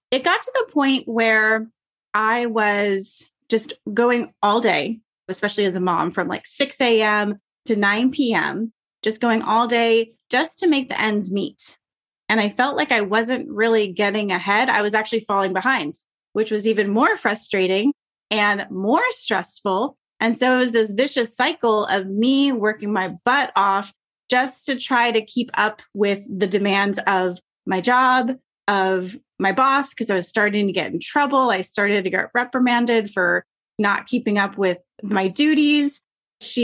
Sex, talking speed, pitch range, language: female, 165 wpm, 200-245 Hz, English